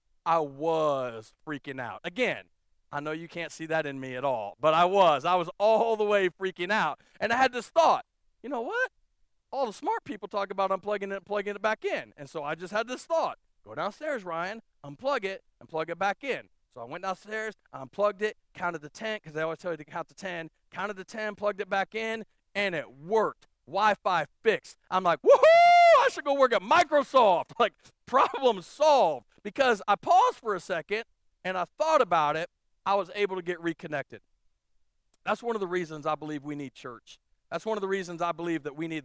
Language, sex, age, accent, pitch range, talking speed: English, male, 40-59, American, 165-230 Hz, 220 wpm